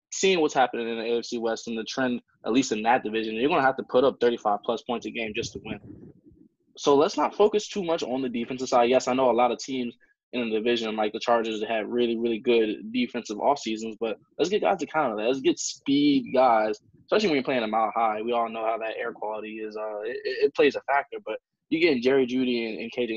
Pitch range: 110-130 Hz